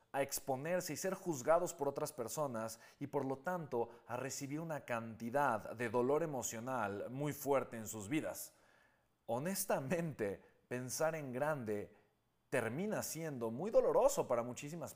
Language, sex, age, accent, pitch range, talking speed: Spanish, male, 30-49, Mexican, 125-165 Hz, 135 wpm